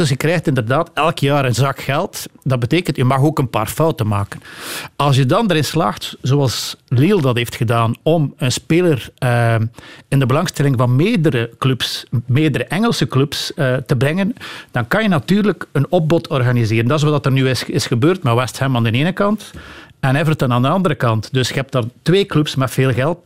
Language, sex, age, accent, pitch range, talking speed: Dutch, male, 60-79, Dutch, 125-155 Hz, 205 wpm